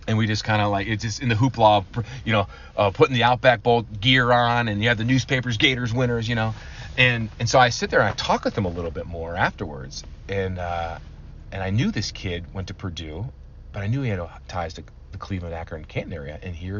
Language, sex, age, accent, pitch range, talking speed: English, male, 40-59, American, 85-110 Hz, 250 wpm